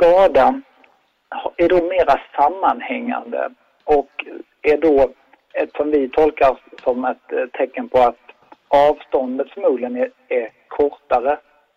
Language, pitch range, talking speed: Swedish, 130-165 Hz, 110 wpm